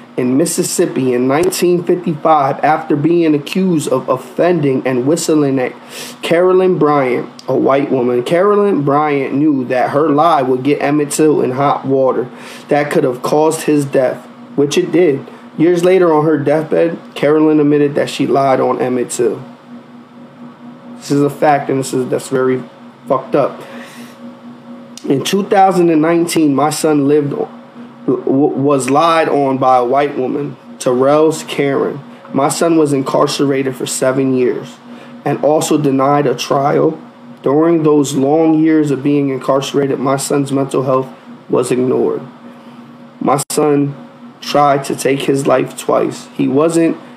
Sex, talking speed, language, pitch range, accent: male, 145 wpm, English, 135-160 Hz, American